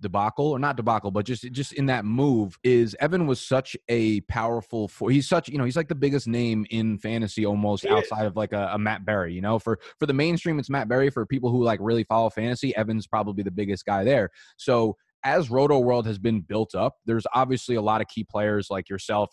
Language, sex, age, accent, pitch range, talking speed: English, male, 20-39, American, 105-125 Hz, 235 wpm